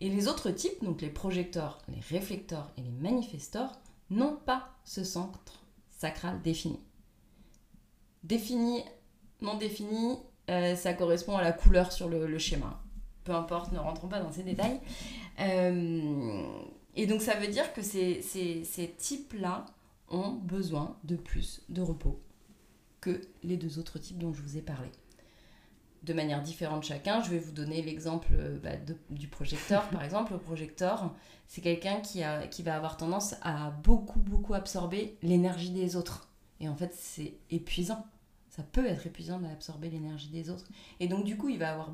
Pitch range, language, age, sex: 160-205 Hz, French, 30-49, female